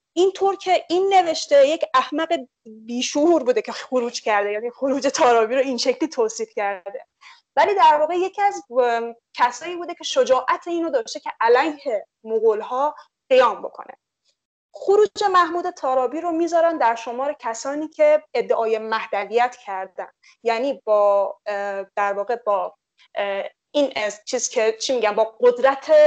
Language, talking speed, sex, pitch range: English, 145 wpm, female, 225-320 Hz